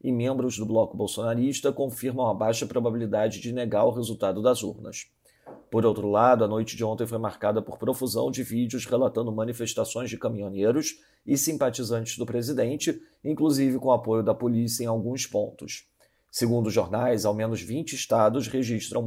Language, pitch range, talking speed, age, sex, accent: Portuguese, 110-125 Hz, 165 wpm, 40-59, male, Brazilian